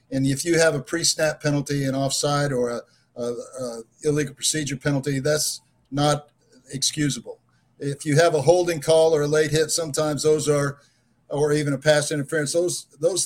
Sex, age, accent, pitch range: male, 50-69, American, 135-155 Hz